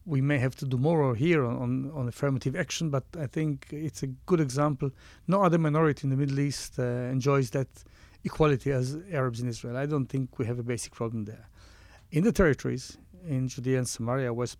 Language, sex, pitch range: English, male, 125-155 Hz